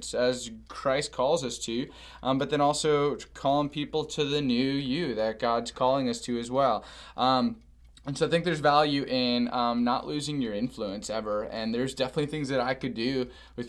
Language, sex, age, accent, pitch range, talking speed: English, male, 20-39, American, 115-135 Hz, 195 wpm